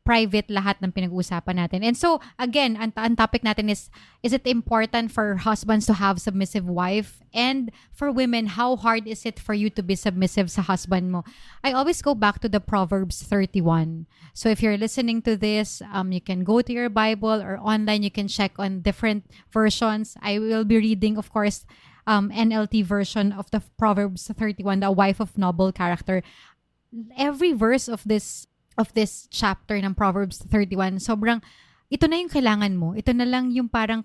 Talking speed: 185 wpm